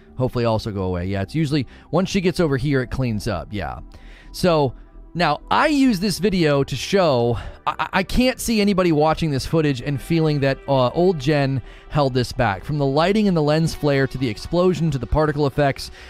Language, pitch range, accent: English, 120-155 Hz, American